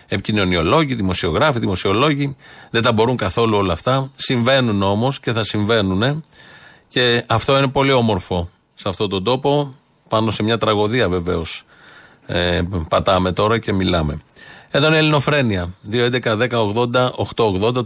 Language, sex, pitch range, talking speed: Greek, male, 105-135 Hz, 130 wpm